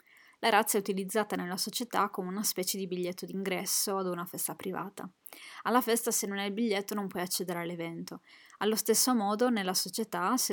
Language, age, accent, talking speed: Italian, 20-39, native, 190 wpm